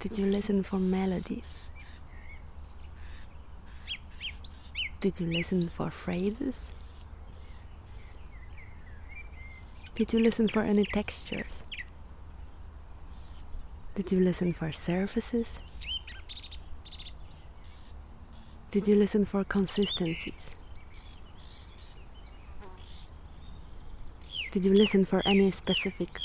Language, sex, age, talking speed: English, female, 30-49, 75 wpm